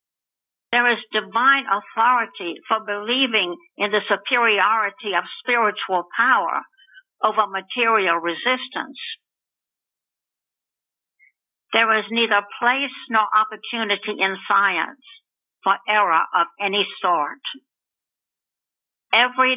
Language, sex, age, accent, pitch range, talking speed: English, female, 60-79, American, 200-250 Hz, 90 wpm